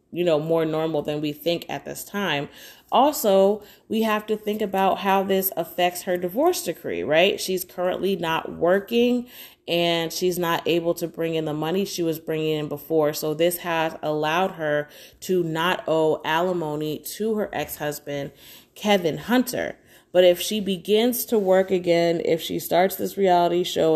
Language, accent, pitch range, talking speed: English, American, 160-195 Hz, 170 wpm